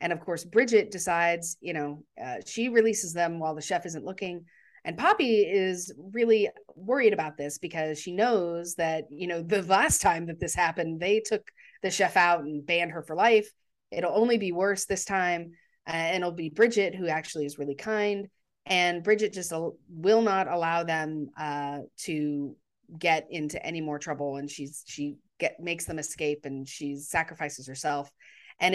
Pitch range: 155-220 Hz